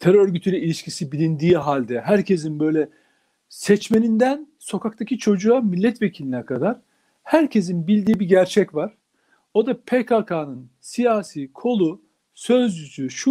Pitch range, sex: 155-235 Hz, male